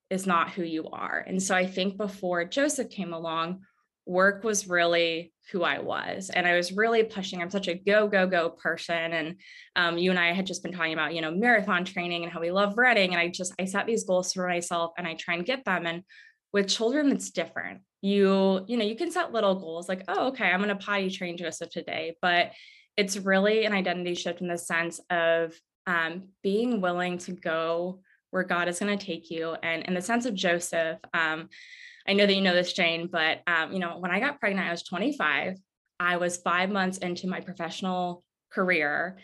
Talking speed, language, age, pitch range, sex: 220 wpm, English, 20-39, 170-200 Hz, female